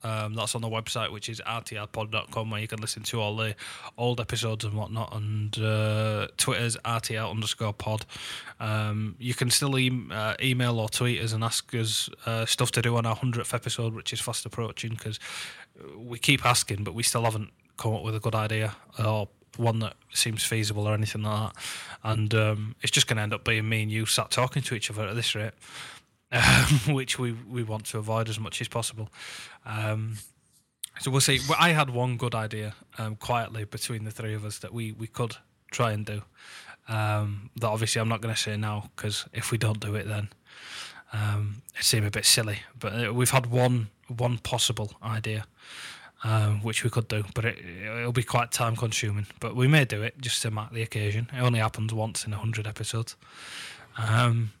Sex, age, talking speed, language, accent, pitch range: male, 20-39, 205 wpm, English, British, 110-120 Hz